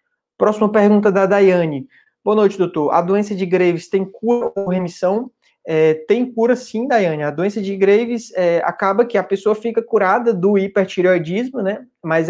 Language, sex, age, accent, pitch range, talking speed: Portuguese, male, 20-39, Brazilian, 185-225 Hz, 170 wpm